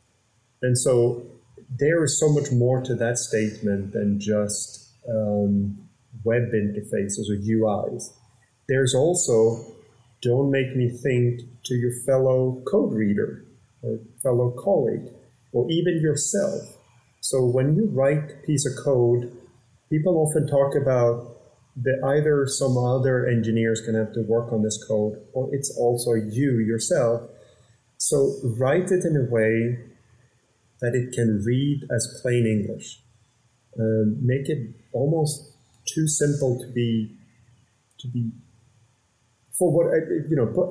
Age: 30-49